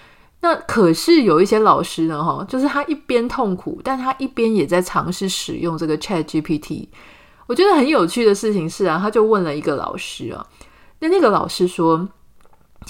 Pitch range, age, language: 170-230 Hz, 30-49, Chinese